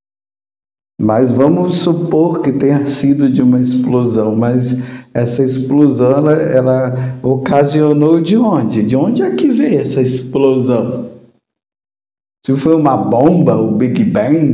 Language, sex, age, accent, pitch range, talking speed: Portuguese, male, 50-69, Brazilian, 130-170 Hz, 120 wpm